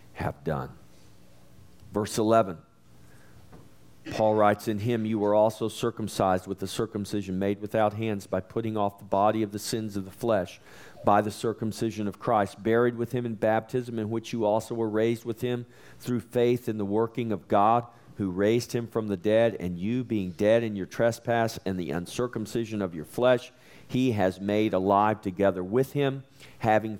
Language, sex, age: English, male, 50-69